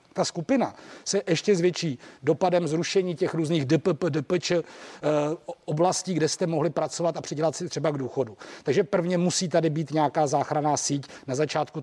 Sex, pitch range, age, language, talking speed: male, 150-175 Hz, 40-59, Czech, 160 wpm